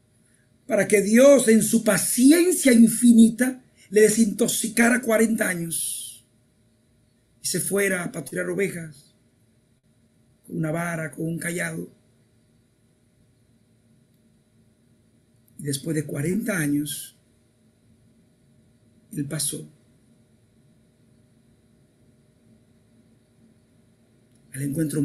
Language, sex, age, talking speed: Spanish, male, 50-69, 75 wpm